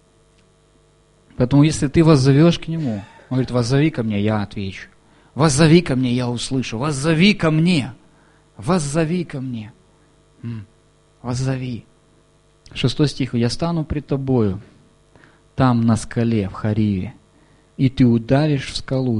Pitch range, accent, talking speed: 115-155 Hz, native, 130 wpm